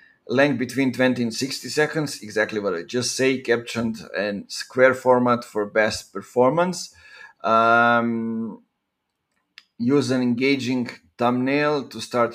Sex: male